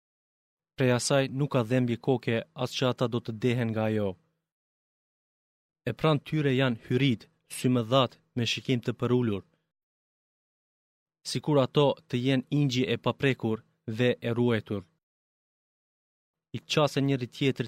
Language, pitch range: Greek, 115-140 Hz